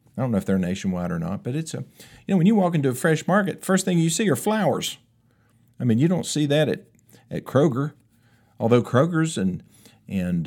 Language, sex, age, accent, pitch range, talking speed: English, male, 50-69, American, 110-160 Hz, 225 wpm